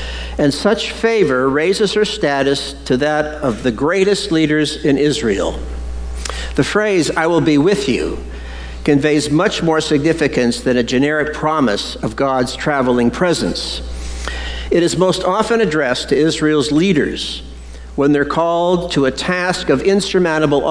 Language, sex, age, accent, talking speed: English, male, 60-79, American, 140 wpm